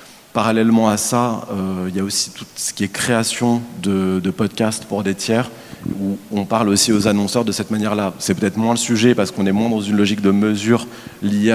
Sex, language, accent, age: male, French, French, 30-49